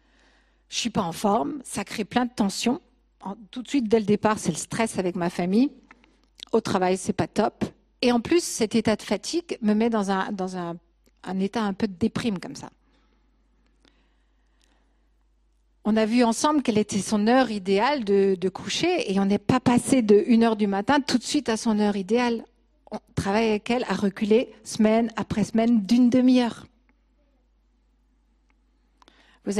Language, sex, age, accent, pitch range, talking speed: French, female, 50-69, French, 200-255 Hz, 180 wpm